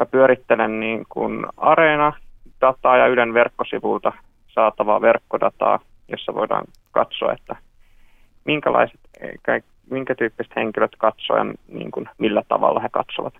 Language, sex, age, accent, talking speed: Finnish, male, 30-49, native, 110 wpm